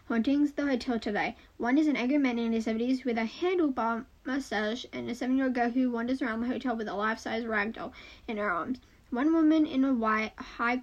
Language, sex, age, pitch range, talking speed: English, female, 10-29, 220-280 Hz, 210 wpm